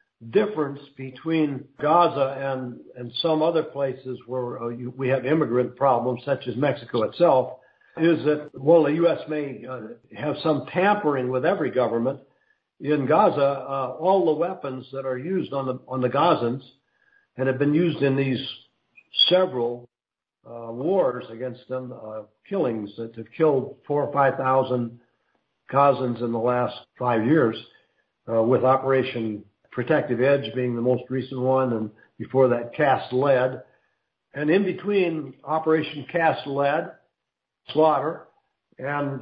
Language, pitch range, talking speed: English, 125-160 Hz, 150 wpm